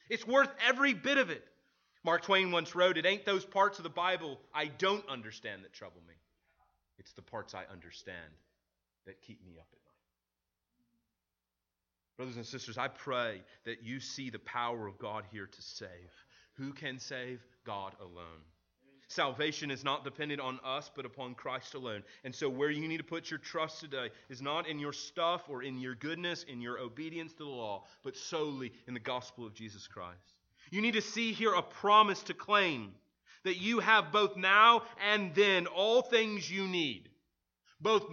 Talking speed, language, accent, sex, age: 185 wpm, English, American, male, 30-49